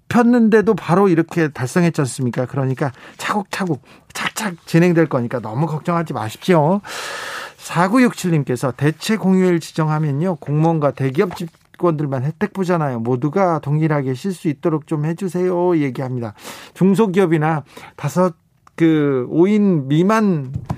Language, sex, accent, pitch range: Korean, male, native, 130-175 Hz